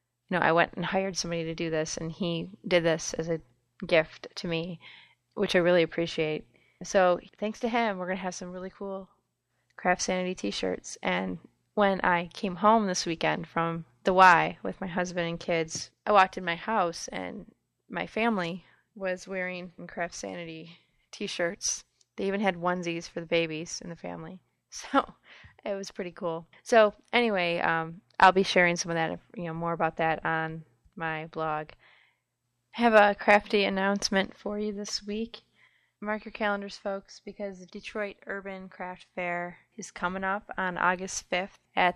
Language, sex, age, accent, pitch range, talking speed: English, female, 20-39, American, 170-200 Hz, 175 wpm